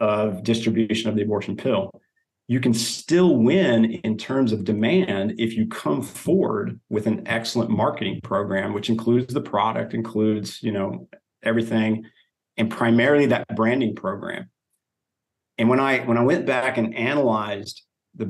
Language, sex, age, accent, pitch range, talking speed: English, male, 40-59, American, 110-125 Hz, 150 wpm